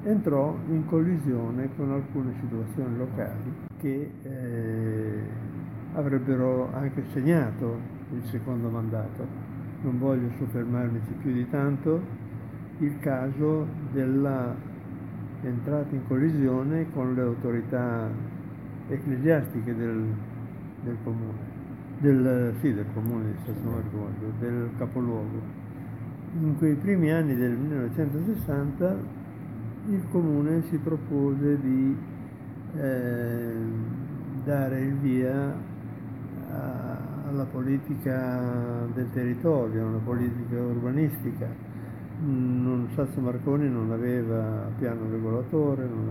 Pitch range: 120-145 Hz